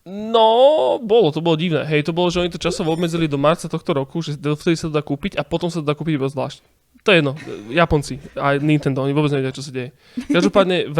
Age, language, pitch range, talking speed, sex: 20-39, Slovak, 140-160 Hz, 240 wpm, male